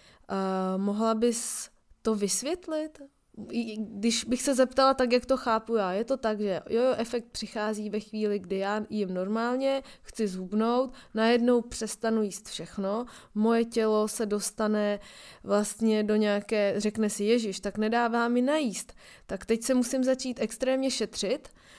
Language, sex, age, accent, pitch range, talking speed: Czech, female, 20-39, native, 205-235 Hz, 155 wpm